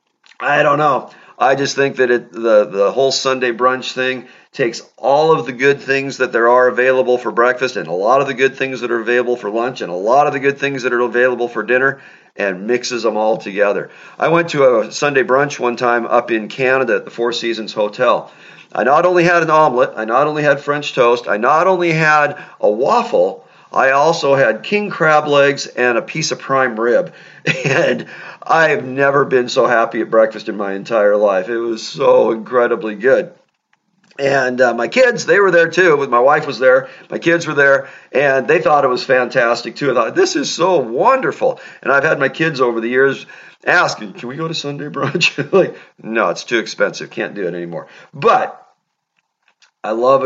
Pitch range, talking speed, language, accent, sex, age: 120-160 Hz, 205 wpm, English, American, male, 40-59